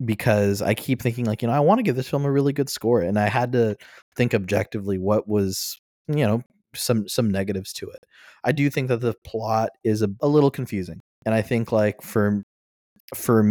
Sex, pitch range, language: male, 100-115 Hz, English